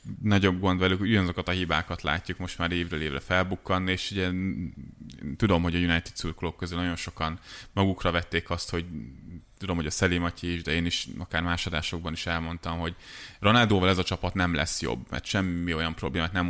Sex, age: male, 20-39